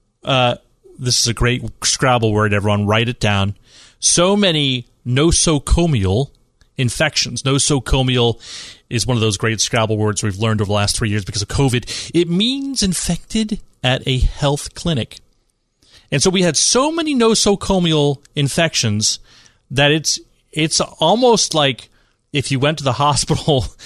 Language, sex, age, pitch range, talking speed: English, male, 30-49, 115-155 Hz, 150 wpm